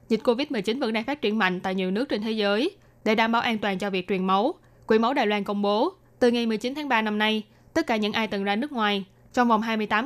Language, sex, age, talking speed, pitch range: Vietnamese, female, 20-39, 275 wpm, 200-245 Hz